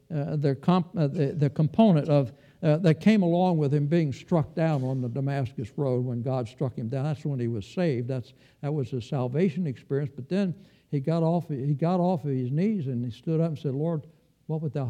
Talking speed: 235 wpm